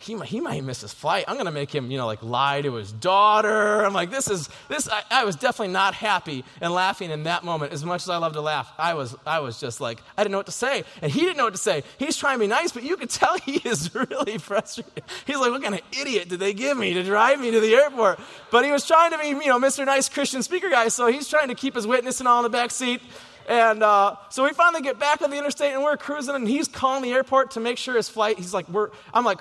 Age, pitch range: 30-49, 180-250 Hz